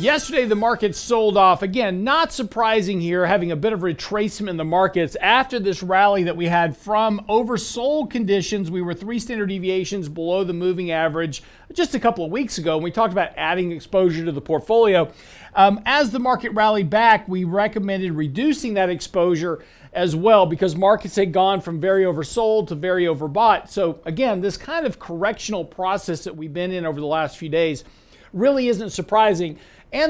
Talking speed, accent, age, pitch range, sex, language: 185 wpm, American, 50-69, 175-220 Hz, male, English